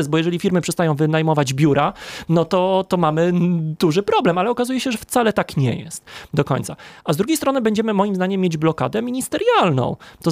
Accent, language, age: native, Polish, 30-49